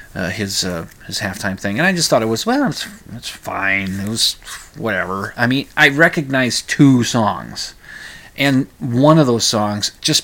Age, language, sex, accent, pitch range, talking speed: 30-49, English, male, American, 105-135 Hz, 180 wpm